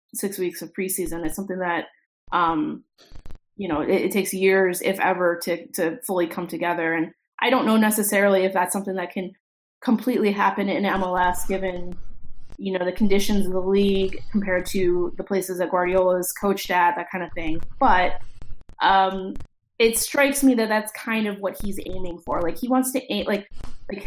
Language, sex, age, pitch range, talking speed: English, female, 20-39, 180-225 Hz, 190 wpm